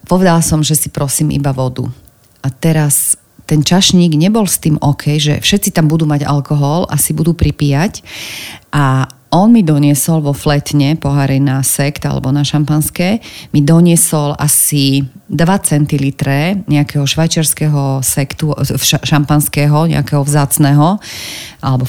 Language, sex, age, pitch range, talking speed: Slovak, female, 40-59, 140-170 Hz, 135 wpm